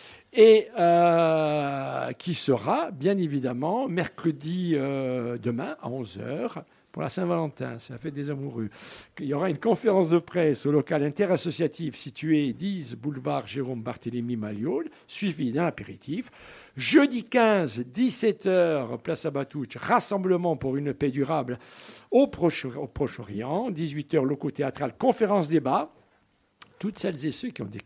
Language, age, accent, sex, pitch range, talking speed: French, 60-79, French, male, 140-190 Hz, 140 wpm